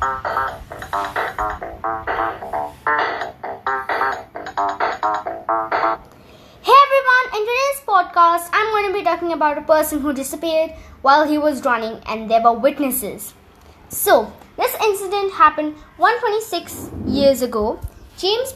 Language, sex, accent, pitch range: English, female, Indian, 250-350 Hz